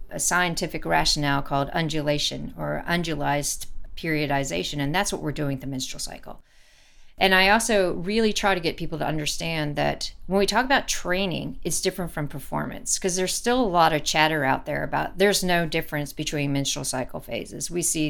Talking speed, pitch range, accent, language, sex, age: 185 wpm, 150-190 Hz, American, English, female, 40-59